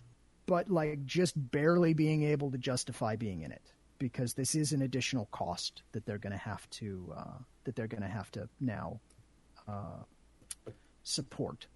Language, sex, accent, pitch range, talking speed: English, male, American, 130-175 Hz, 170 wpm